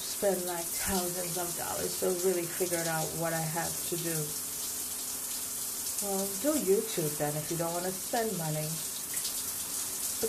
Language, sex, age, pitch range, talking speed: English, female, 30-49, 170-245 Hz, 150 wpm